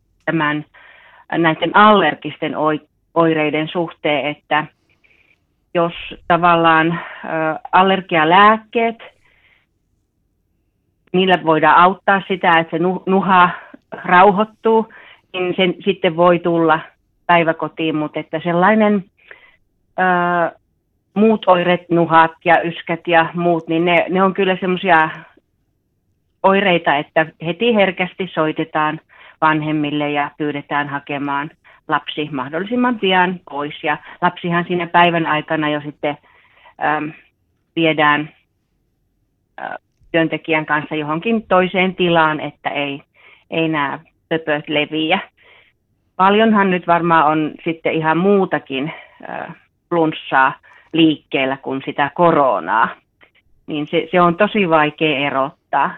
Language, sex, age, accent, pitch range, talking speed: Finnish, female, 40-59, native, 150-180 Hz, 100 wpm